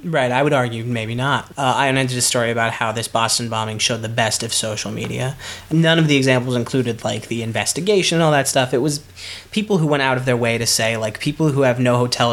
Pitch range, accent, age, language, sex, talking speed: 115-140 Hz, American, 20-39, English, male, 250 wpm